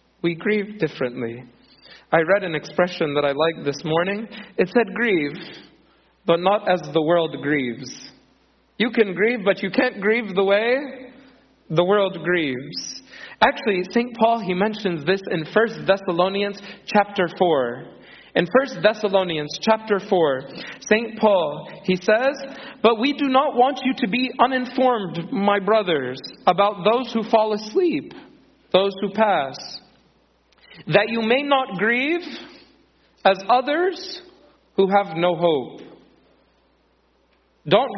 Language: English